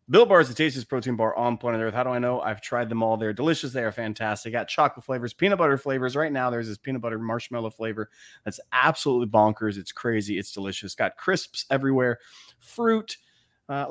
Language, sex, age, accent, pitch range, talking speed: English, male, 30-49, American, 110-135 Hz, 210 wpm